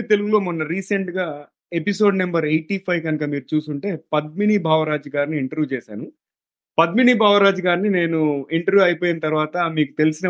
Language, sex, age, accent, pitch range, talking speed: Telugu, male, 30-49, native, 135-175 Hz, 140 wpm